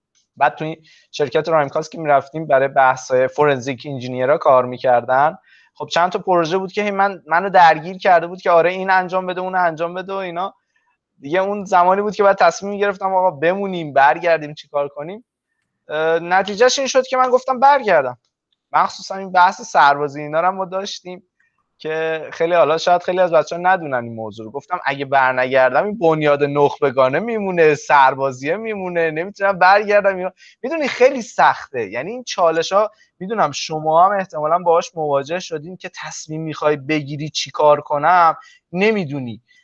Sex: male